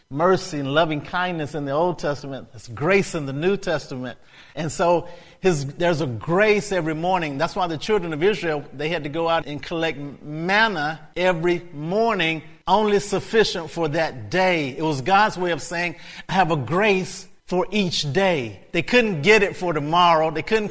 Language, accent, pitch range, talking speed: English, American, 170-215 Hz, 185 wpm